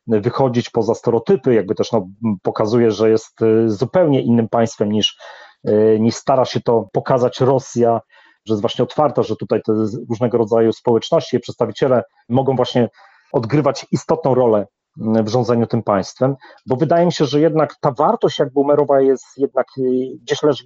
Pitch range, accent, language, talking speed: 115-140 Hz, native, Polish, 155 wpm